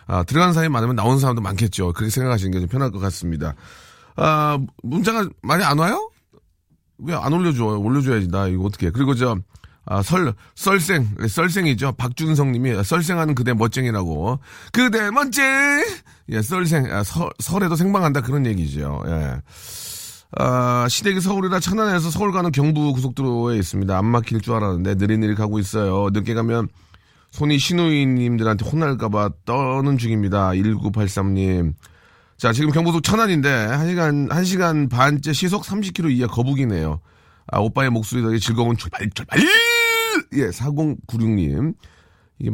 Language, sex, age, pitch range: Korean, male, 30-49, 100-155 Hz